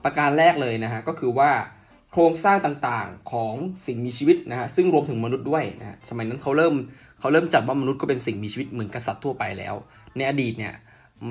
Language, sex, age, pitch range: Thai, male, 10-29, 115-155 Hz